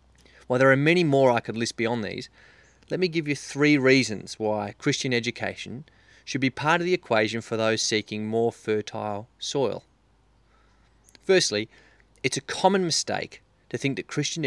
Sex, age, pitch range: male, 30-49, 110-140 Hz